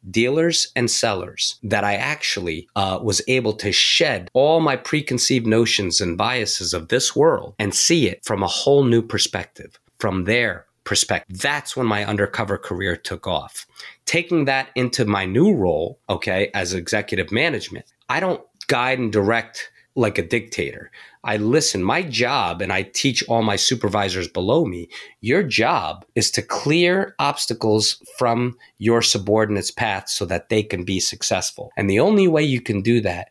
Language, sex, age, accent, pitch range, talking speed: English, male, 30-49, American, 105-130 Hz, 165 wpm